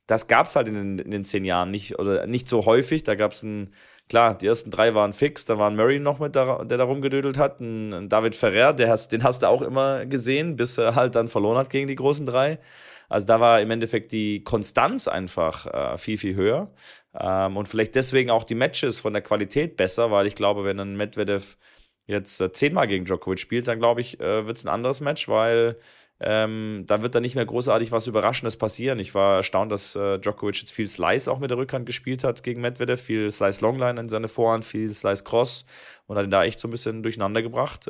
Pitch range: 105-120 Hz